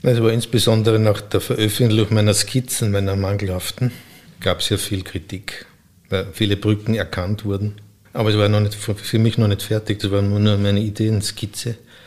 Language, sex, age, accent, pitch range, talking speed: German, male, 50-69, Austrian, 100-110 Hz, 175 wpm